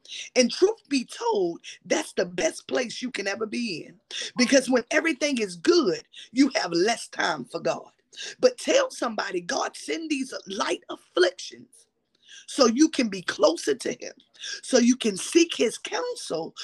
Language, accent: English, American